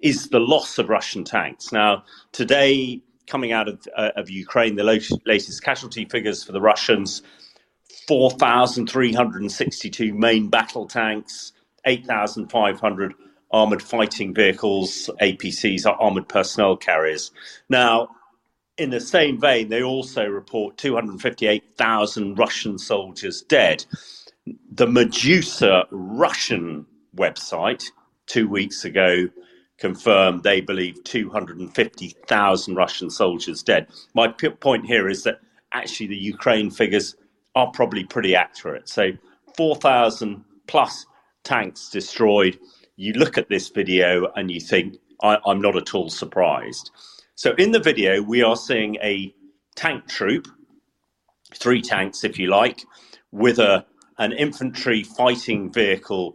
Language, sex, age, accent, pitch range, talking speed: English, male, 40-59, British, 100-125 Hz, 120 wpm